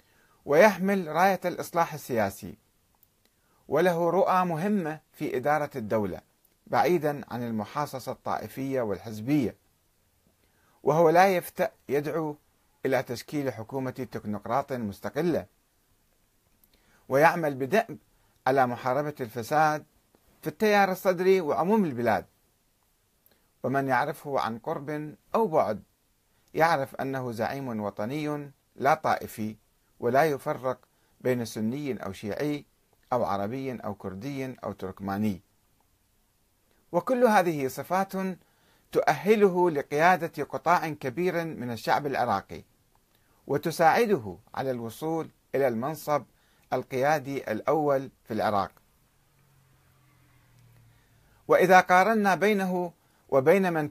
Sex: male